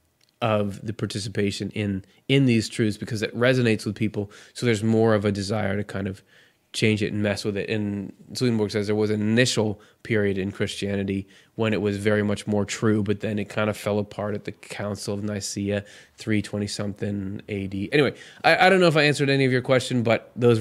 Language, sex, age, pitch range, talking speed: English, male, 20-39, 105-125 Hz, 210 wpm